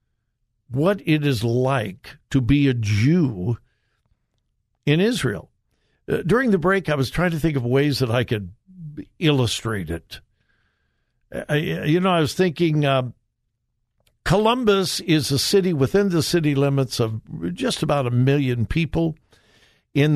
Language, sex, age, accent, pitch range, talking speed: English, male, 60-79, American, 115-155 Hz, 135 wpm